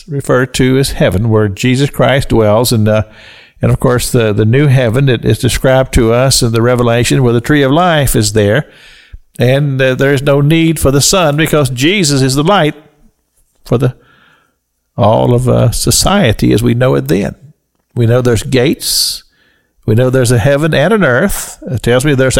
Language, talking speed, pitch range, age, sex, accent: English, 200 wpm, 105-135 Hz, 50-69, male, American